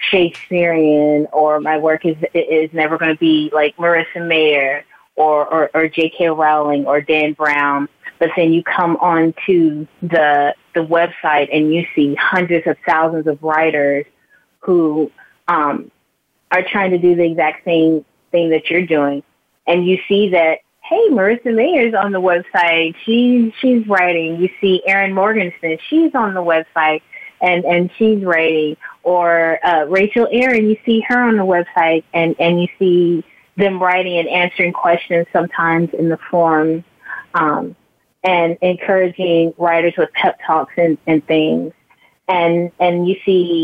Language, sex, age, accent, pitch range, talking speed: English, female, 20-39, American, 160-185 Hz, 155 wpm